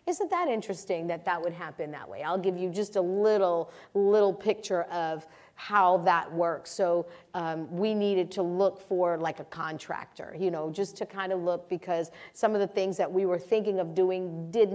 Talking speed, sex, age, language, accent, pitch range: 205 wpm, female, 40-59, English, American, 175-210 Hz